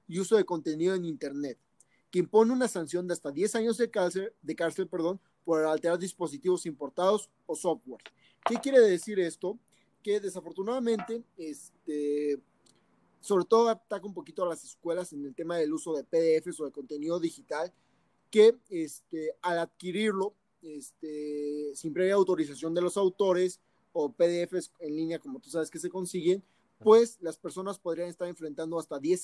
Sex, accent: male, Mexican